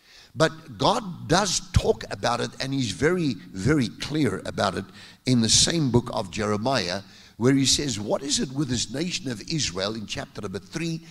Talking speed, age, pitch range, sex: 185 wpm, 50-69, 120-160 Hz, male